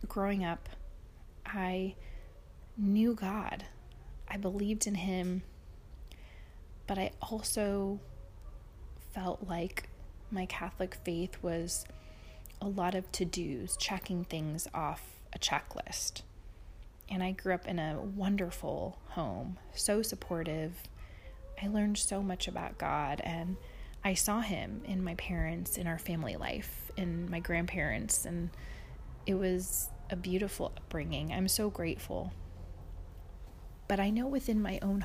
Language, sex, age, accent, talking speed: English, female, 20-39, American, 125 wpm